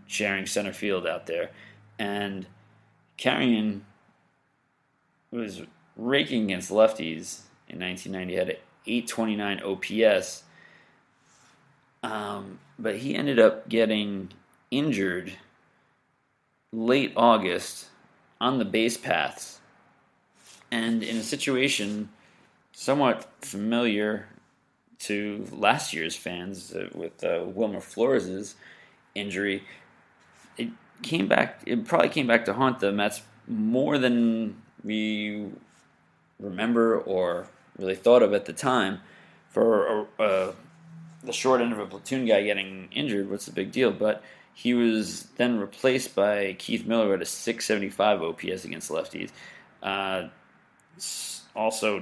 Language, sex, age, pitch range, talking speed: English, male, 30-49, 95-120 Hz, 115 wpm